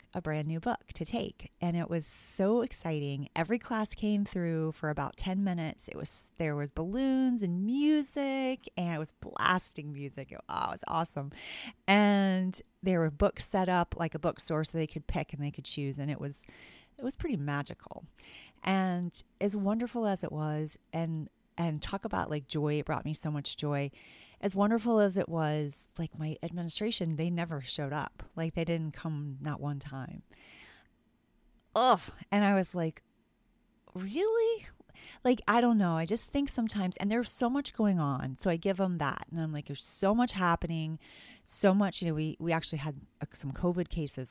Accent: American